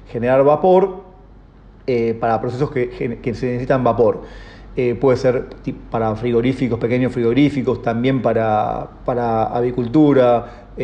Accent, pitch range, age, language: Argentinian, 120-150 Hz, 30-49, Spanish